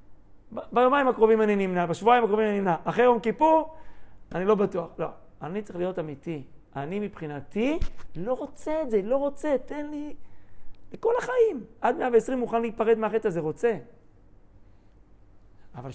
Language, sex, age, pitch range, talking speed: Hebrew, male, 40-59, 140-210 Hz, 155 wpm